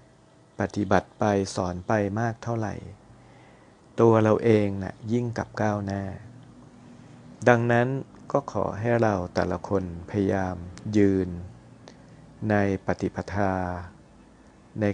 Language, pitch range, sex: Thai, 95-110 Hz, male